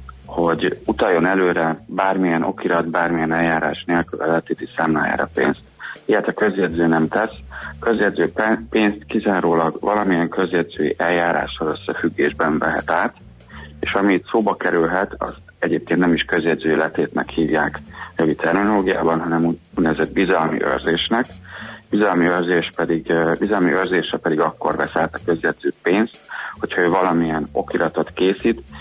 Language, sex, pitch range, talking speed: Hungarian, male, 80-95 Hz, 125 wpm